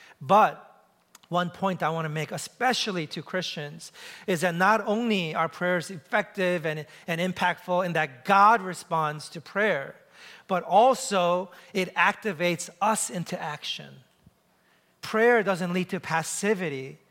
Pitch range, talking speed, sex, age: 160-200 Hz, 135 wpm, male, 40-59